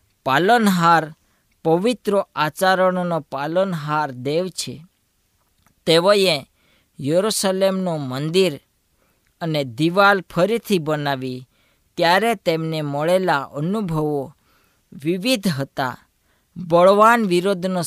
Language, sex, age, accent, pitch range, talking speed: Gujarati, female, 20-39, native, 145-195 Hz, 70 wpm